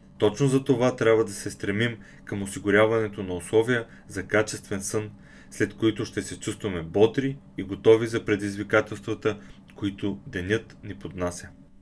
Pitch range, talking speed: 100-130 Hz, 140 wpm